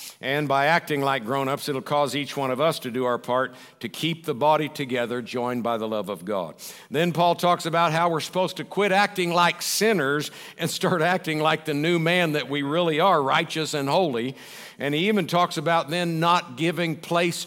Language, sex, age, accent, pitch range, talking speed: English, male, 60-79, American, 145-185 Hz, 210 wpm